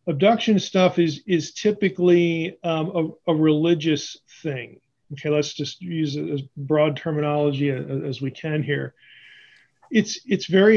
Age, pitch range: 40-59, 145-170 Hz